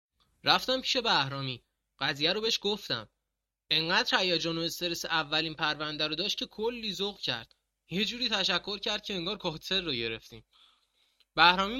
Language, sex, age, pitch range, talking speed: Persian, male, 20-39, 145-210 Hz, 145 wpm